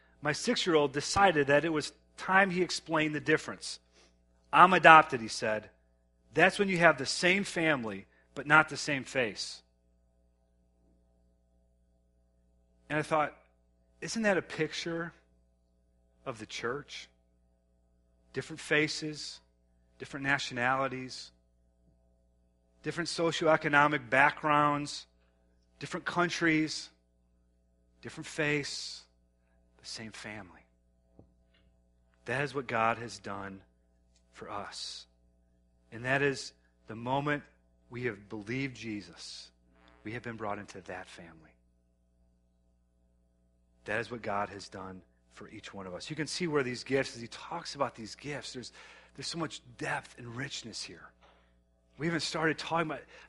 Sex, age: male, 40-59